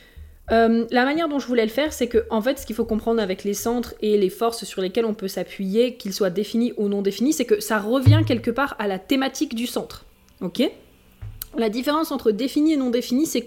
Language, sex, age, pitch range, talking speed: French, female, 20-39, 205-250 Hz, 235 wpm